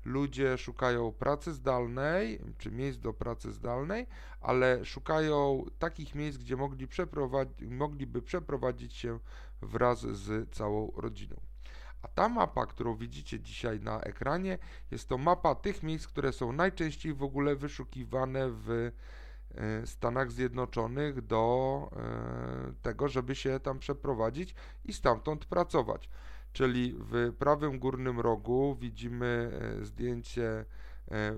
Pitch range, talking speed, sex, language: 110-140 Hz, 120 wpm, male, Polish